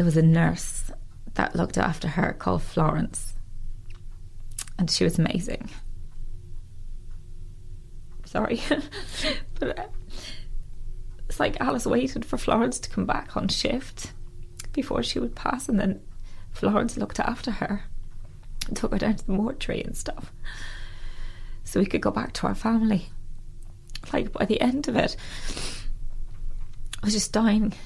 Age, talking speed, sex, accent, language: 20-39, 140 wpm, female, British, English